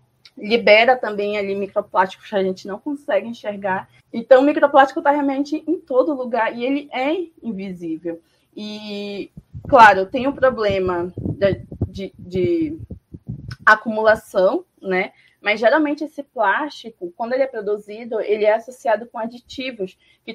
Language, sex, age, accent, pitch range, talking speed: Portuguese, female, 20-39, Brazilian, 200-270 Hz, 135 wpm